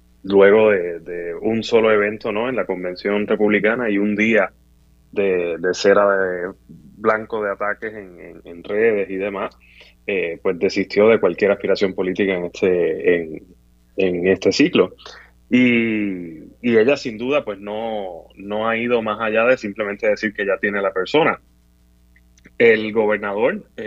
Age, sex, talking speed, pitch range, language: 20-39, male, 155 wpm, 90-125 Hz, Spanish